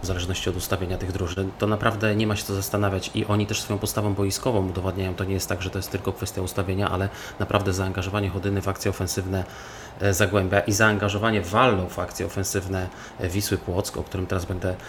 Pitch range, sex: 95-105 Hz, male